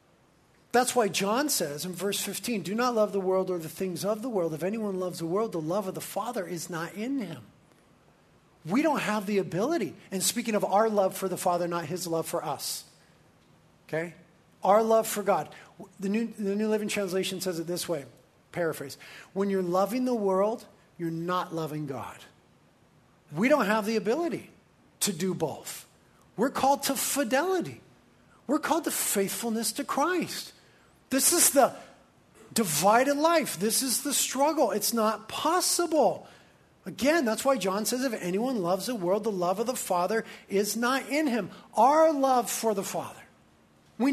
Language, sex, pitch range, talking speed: English, male, 185-270 Hz, 175 wpm